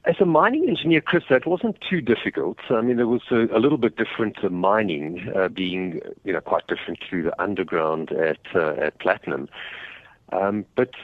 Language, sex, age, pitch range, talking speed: English, male, 50-69, 95-115 Hz, 190 wpm